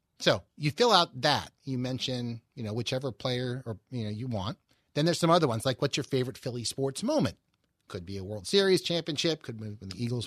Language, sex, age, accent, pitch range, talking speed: English, male, 30-49, American, 125-180 Hz, 230 wpm